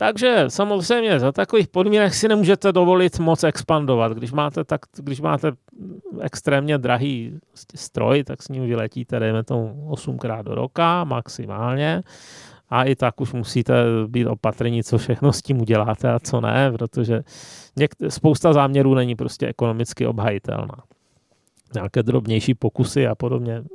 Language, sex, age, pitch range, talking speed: Czech, male, 30-49, 120-165 Hz, 140 wpm